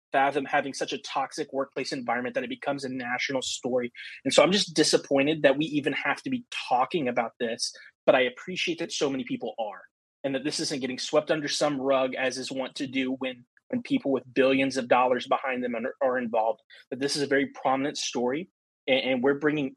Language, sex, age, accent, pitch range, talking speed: English, male, 20-39, American, 130-165 Hz, 220 wpm